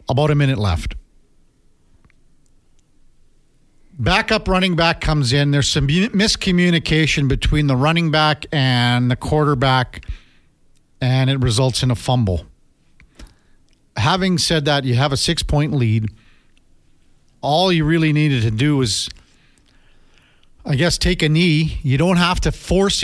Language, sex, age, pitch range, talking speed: English, male, 50-69, 130-170 Hz, 130 wpm